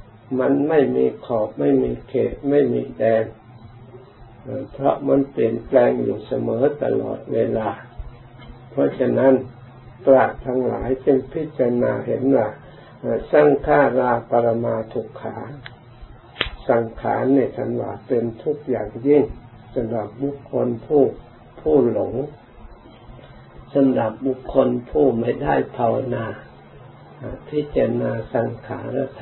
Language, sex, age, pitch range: Thai, male, 60-79, 105-130 Hz